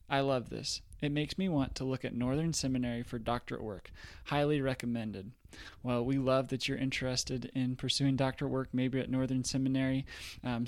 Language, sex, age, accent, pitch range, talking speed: English, male, 20-39, American, 125-145 Hz, 180 wpm